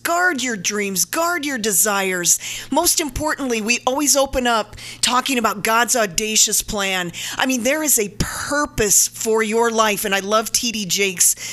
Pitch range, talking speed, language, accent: 190-250 Hz, 160 wpm, English, American